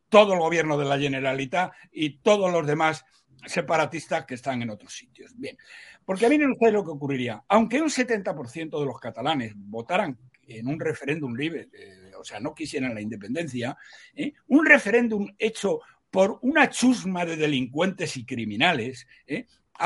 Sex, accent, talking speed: male, Spanish, 170 wpm